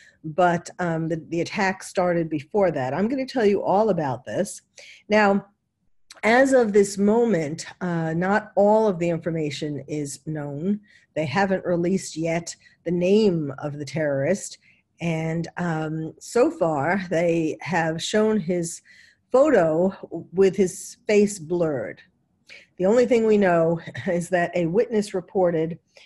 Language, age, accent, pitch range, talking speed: English, 50-69, American, 165-210 Hz, 140 wpm